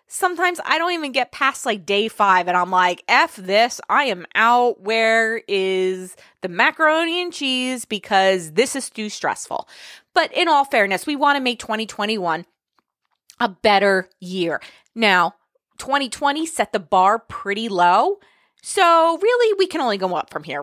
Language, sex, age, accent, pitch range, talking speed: English, female, 20-39, American, 190-255 Hz, 165 wpm